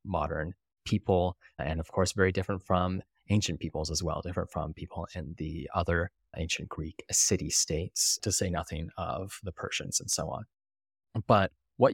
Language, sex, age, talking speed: English, male, 20-39, 165 wpm